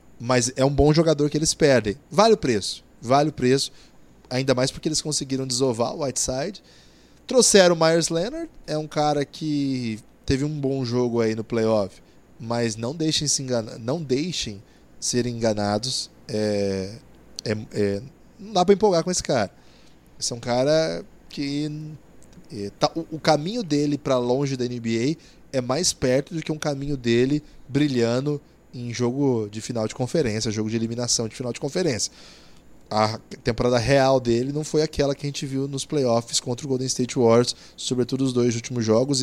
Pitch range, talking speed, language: 120-155 Hz, 175 wpm, Portuguese